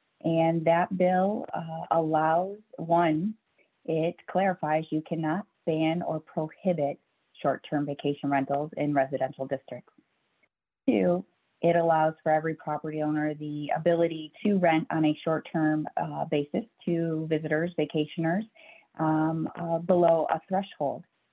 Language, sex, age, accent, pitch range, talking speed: English, female, 30-49, American, 150-185 Hz, 120 wpm